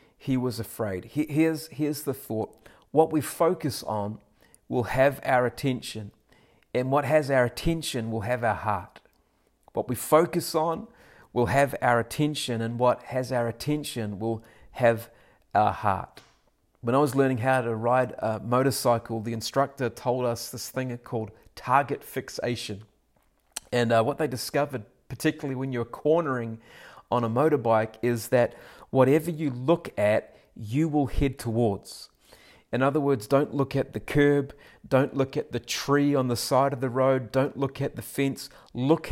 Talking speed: 165 wpm